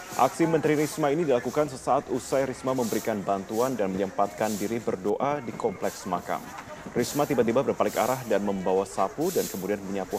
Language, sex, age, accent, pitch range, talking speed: Indonesian, male, 30-49, native, 105-125 Hz, 160 wpm